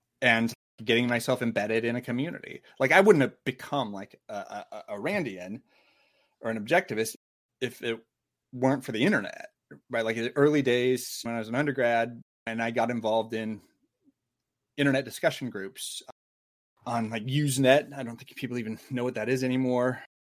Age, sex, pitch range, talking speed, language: 30-49, male, 110-130 Hz, 170 wpm, English